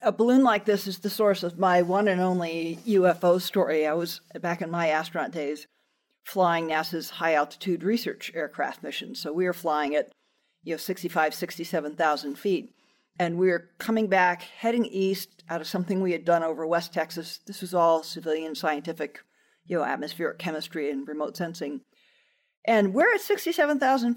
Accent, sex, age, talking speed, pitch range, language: American, female, 50-69, 175 wpm, 165-205 Hz, English